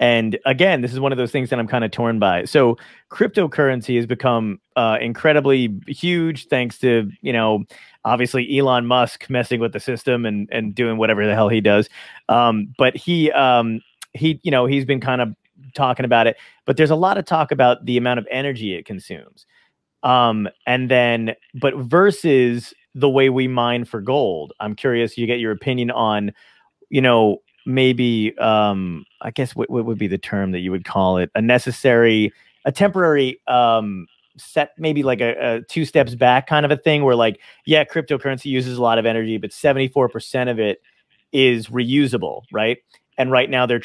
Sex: male